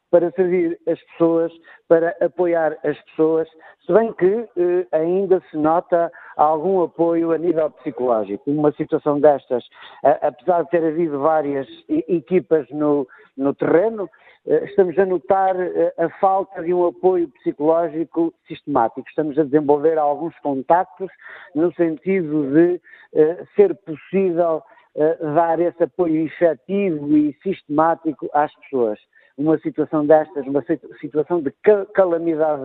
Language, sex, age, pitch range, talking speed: Portuguese, male, 50-69, 150-185 Hz, 135 wpm